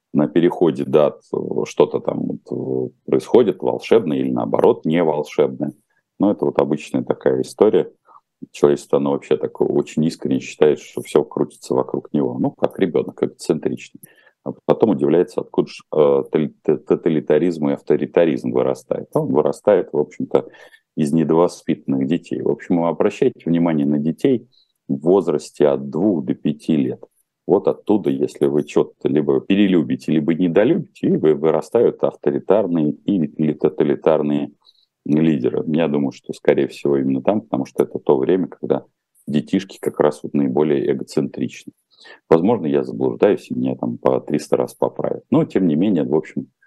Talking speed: 145 wpm